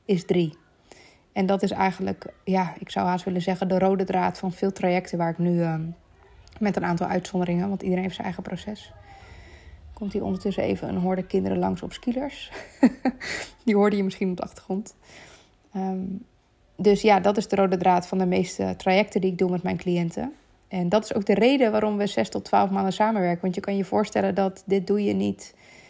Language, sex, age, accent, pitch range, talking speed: Dutch, female, 20-39, Dutch, 180-205 Hz, 205 wpm